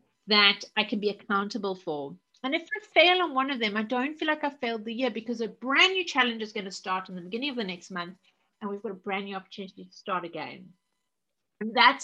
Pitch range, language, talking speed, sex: 190-250 Hz, English, 245 wpm, female